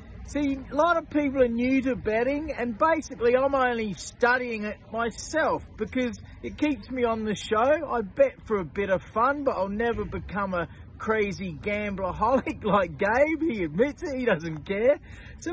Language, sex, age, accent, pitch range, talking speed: English, male, 40-59, Australian, 225-270 Hz, 180 wpm